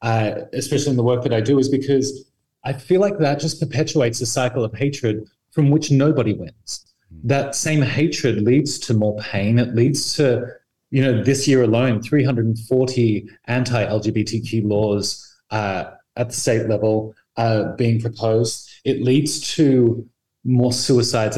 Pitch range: 110-140 Hz